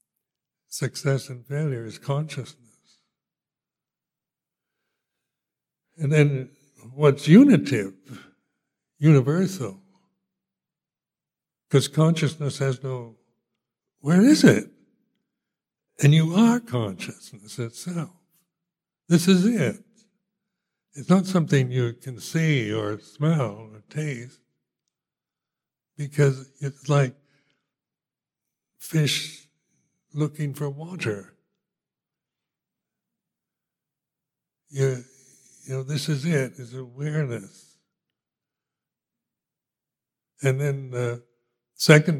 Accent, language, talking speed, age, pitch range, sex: American, English, 75 wpm, 60-79, 120-155 Hz, male